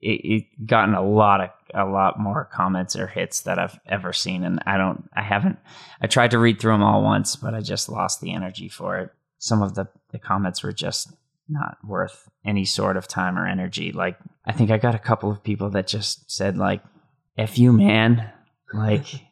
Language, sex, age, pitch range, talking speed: English, male, 20-39, 100-120 Hz, 210 wpm